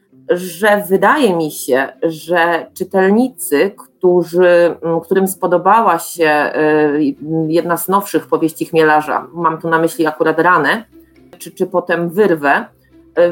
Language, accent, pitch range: Polish, native, 165-215 Hz